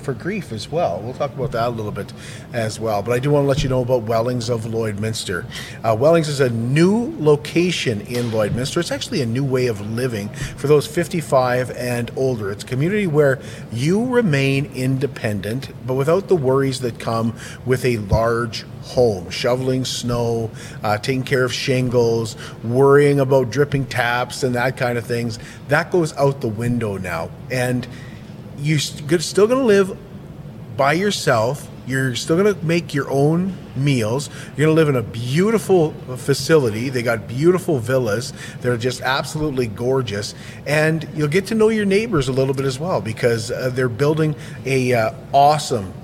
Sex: male